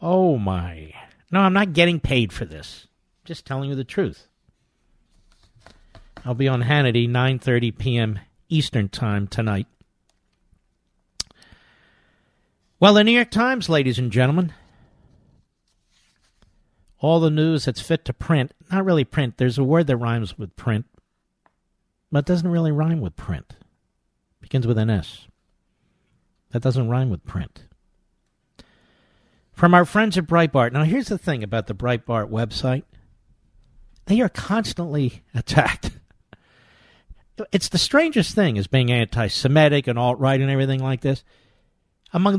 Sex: male